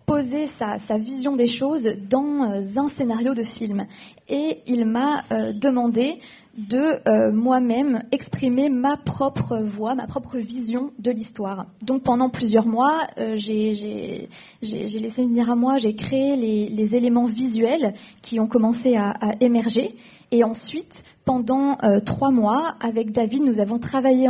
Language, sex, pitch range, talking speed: French, female, 220-260 Hz, 160 wpm